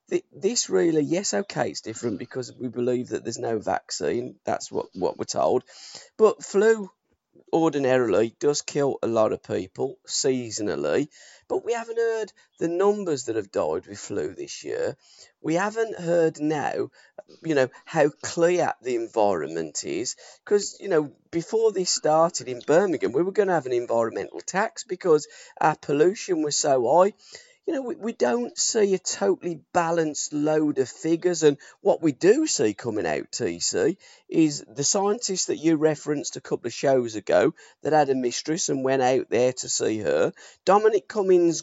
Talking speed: 170 wpm